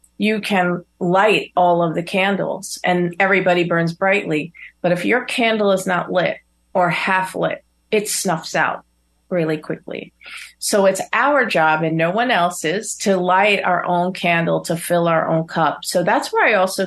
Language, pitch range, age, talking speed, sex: English, 170-200 Hz, 40-59, 175 wpm, female